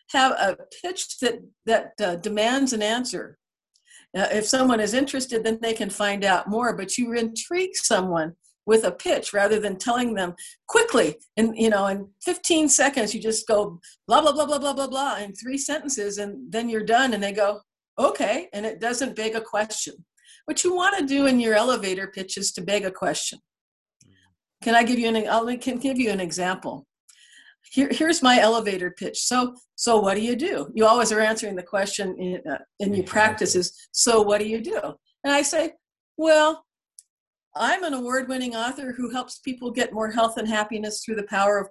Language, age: English, 50-69